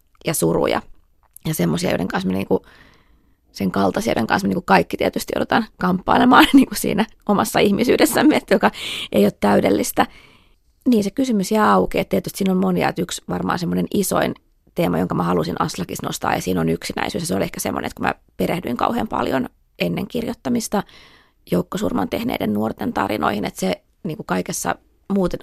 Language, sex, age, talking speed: Finnish, female, 30-49, 170 wpm